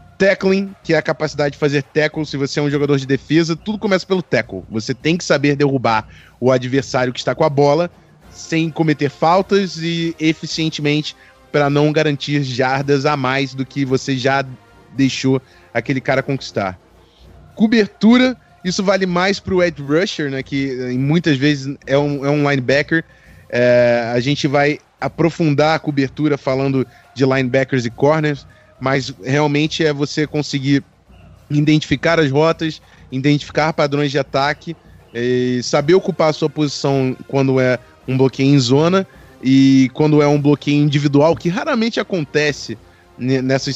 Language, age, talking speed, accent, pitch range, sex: Portuguese, 20-39, 150 wpm, Brazilian, 135-160 Hz, male